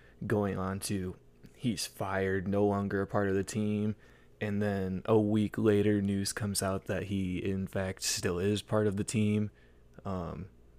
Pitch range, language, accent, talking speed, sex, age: 90-105 Hz, English, American, 170 wpm, male, 20-39